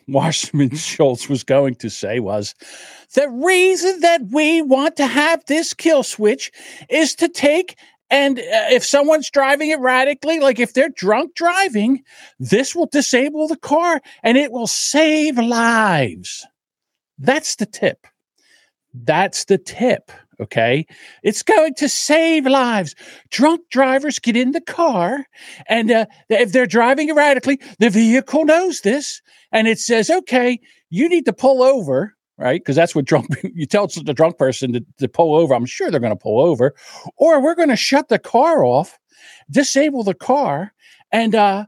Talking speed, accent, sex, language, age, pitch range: 160 wpm, American, male, English, 50-69, 195-295 Hz